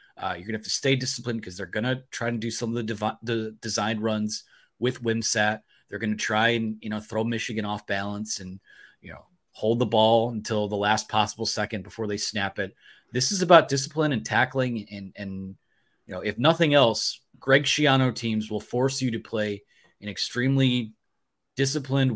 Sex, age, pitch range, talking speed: male, 30-49, 105-125 Hz, 190 wpm